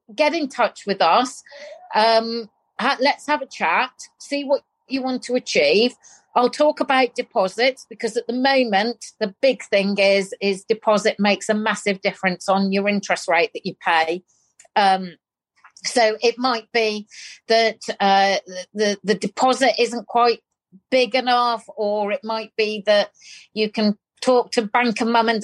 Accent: British